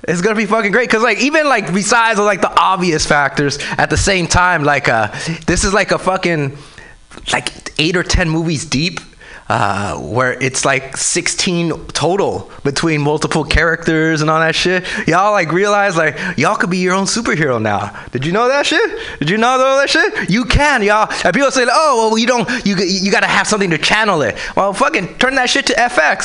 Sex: male